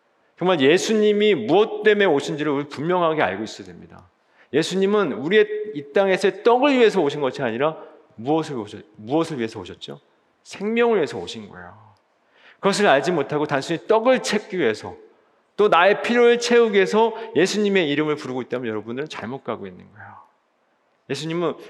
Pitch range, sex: 135-215 Hz, male